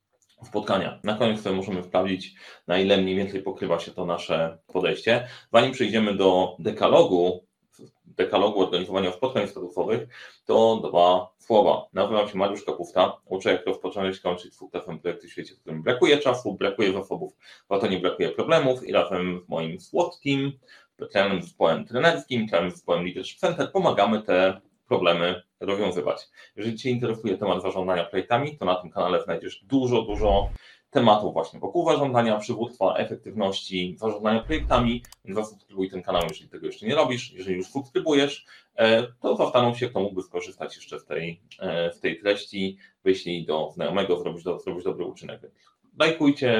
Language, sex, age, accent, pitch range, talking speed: Polish, male, 30-49, native, 90-125 Hz, 150 wpm